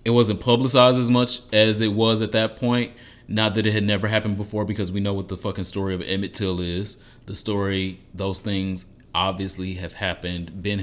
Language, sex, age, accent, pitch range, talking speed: English, male, 30-49, American, 90-105 Hz, 205 wpm